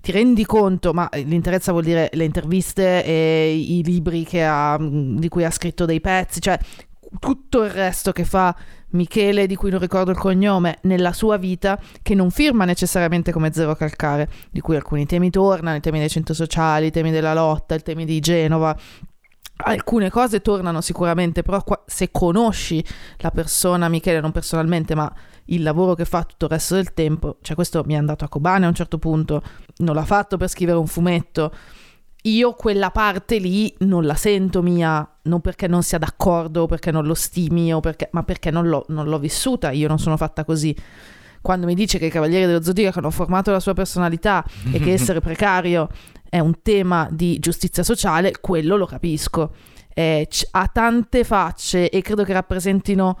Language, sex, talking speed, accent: Italian, female, 190 wpm, native